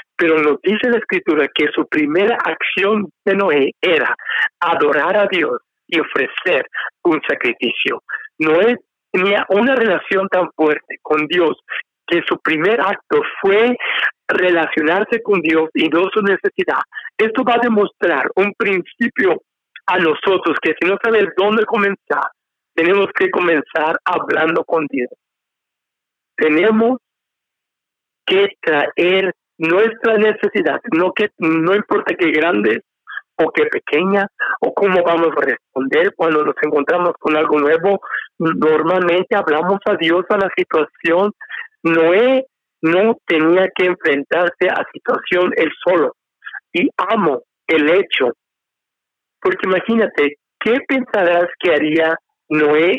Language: English